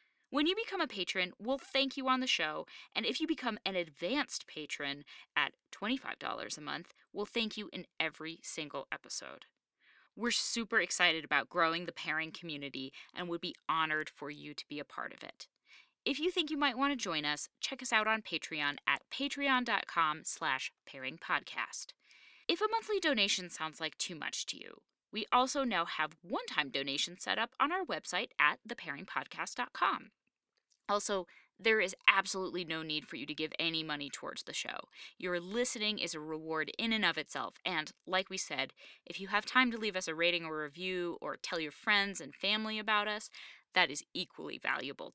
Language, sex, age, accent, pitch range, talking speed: English, female, 20-39, American, 155-230 Hz, 190 wpm